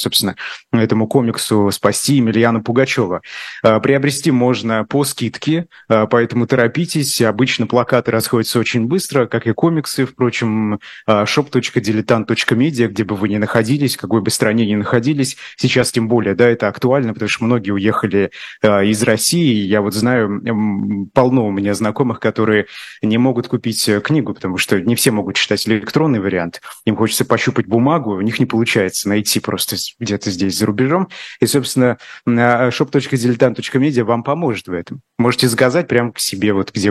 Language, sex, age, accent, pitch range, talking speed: Russian, male, 20-39, native, 105-130 Hz, 150 wpm